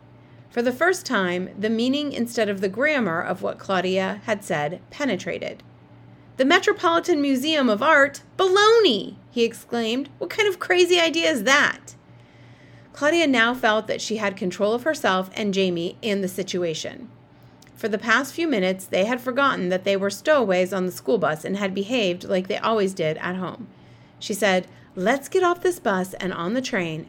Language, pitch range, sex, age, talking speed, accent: English, 190-295 Hz, female, 30-49, 180 wpm, American